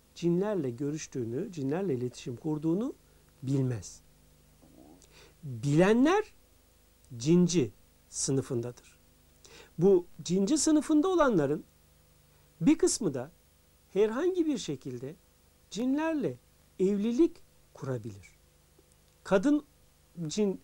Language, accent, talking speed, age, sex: Turkish, native, 70 wpm, 60-79, male